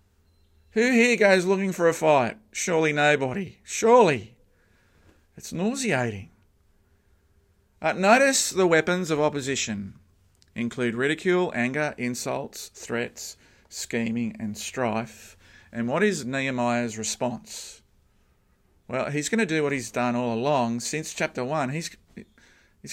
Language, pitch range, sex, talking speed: English, 115-175 Hz, male, 115 wpm